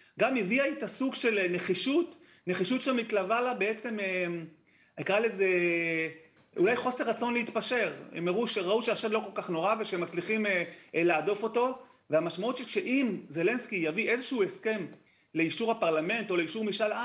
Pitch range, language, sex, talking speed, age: 170-225 Hz, Hebrew, male, 135 wpm, 30-49